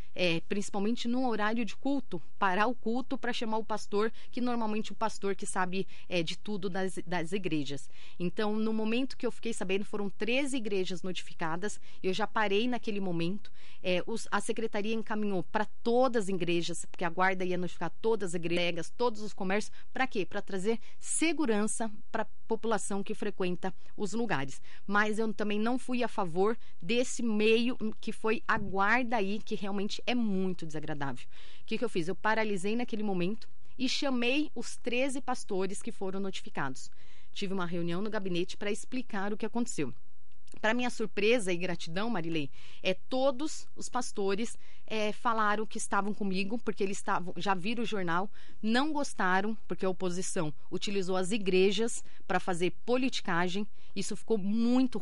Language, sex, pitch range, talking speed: Slovak, female, 185-225 Hz, 170 wpm